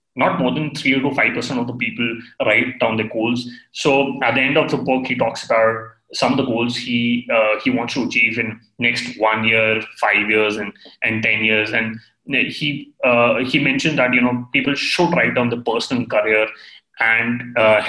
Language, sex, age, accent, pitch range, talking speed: English, male, 30-49, Indian, 110-125 Hz, 205 wpm